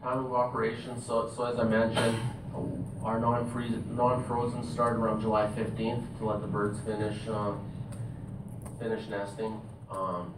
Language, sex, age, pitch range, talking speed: English, male, 30-49, 100-120 Hz, 140 wpm